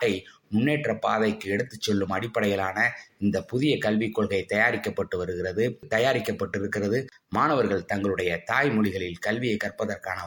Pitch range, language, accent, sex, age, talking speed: 105-130 Hz, Tamil, native, male, 20-39, 60 wpm